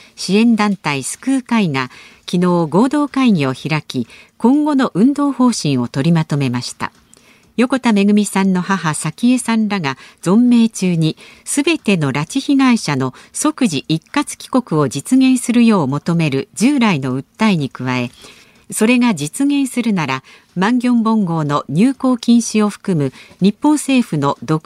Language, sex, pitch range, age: Japanese, female, 150-245 Hz, 50-69